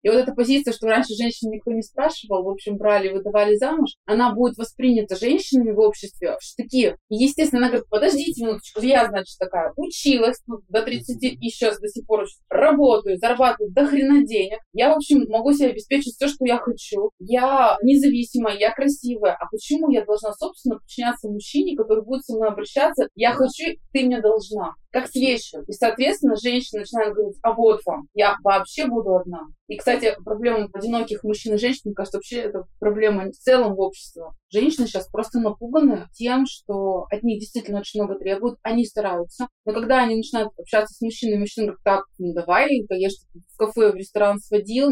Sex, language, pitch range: female, Russian, 205-255 Hz